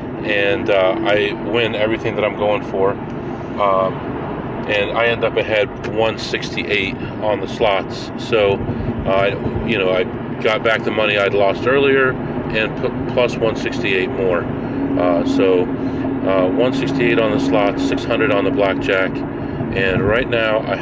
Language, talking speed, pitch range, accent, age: English, 145 wpm, 105-120 Hz, American, 40-59